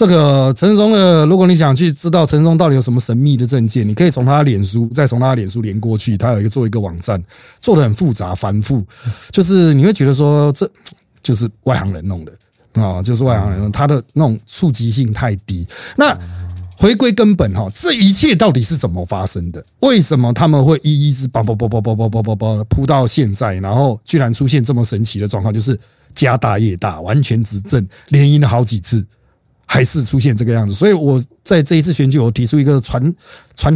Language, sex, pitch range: Chinese, male, 115-170 Hz